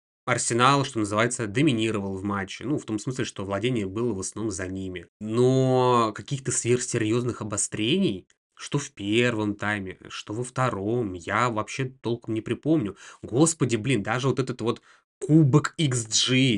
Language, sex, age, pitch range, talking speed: Russian, male, 20-39, 105-125 Hz, 150 wpm